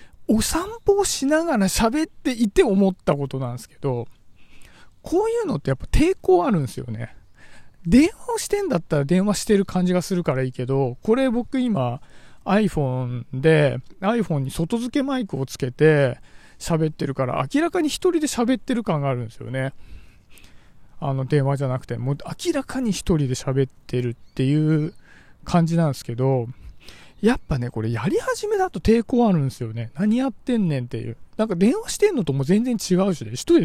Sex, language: male, Japanese